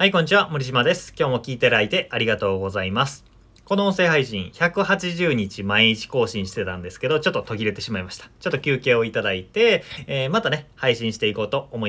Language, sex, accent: Japanese, male, native